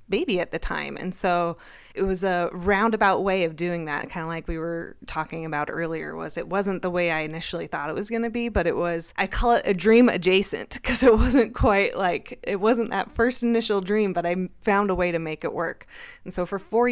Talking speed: 240 wpm